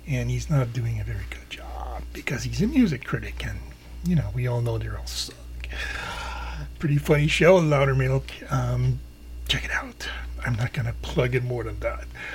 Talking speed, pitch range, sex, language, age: 190 wpm, 115-165 Hz, male, English, 40-59